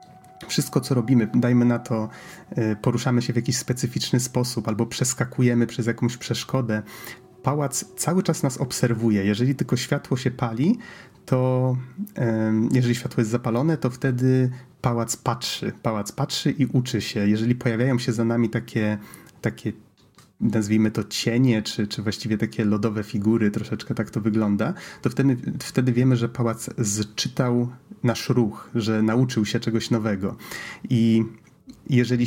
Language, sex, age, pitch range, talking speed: Polish, male, 30-49, 110-130 Hz, 145 wpm